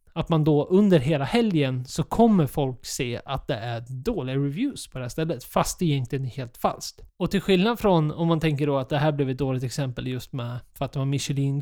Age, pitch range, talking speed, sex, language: 20-39, 140-180 Hz, 255 wpm, male, Swedish